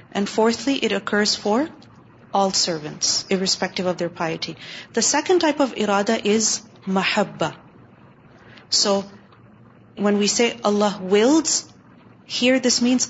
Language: Urdu